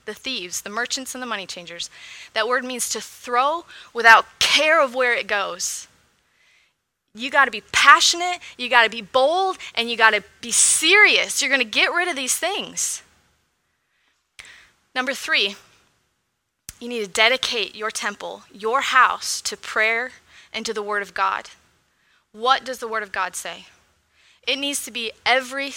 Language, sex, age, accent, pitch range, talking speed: English, female, 20-39, American, 220-275 Hz, 170 wpm